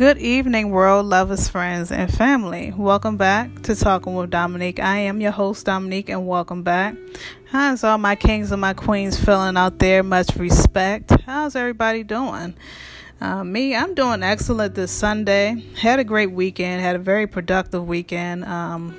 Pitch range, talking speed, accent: 180-215 Hz, 170 wpm, American